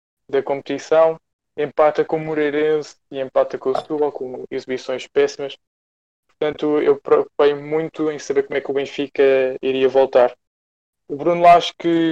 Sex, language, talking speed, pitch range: male, Portuguese, 160 wpm, 125-145 Hz